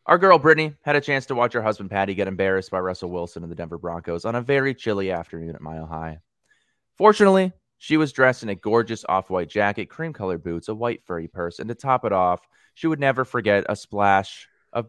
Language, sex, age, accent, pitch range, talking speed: English, male, 20-39, American, 85-130 Hz, 220 wpm